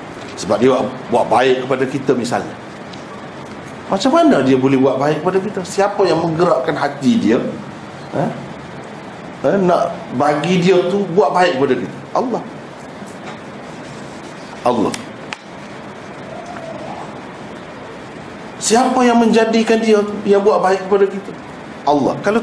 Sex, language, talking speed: male, Malay, 120 wpm